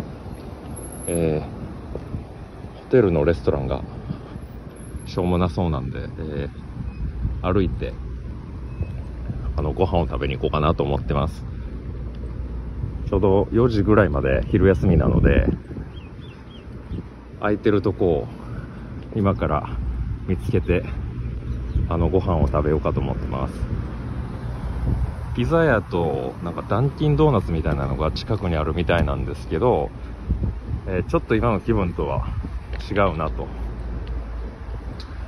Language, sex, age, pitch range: Japanese, male, 40-59, 80-100 Hz